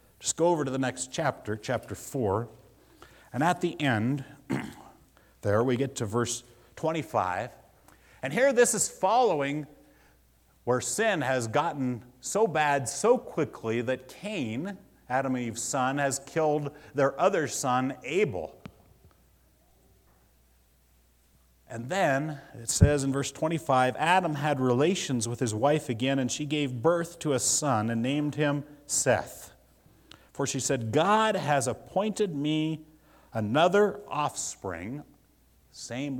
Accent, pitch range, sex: American, 105-150 Hz, male